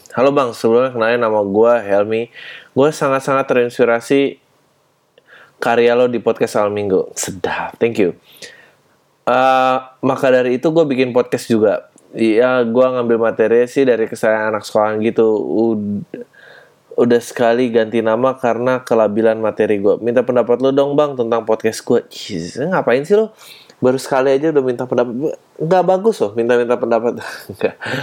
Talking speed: 145 wpm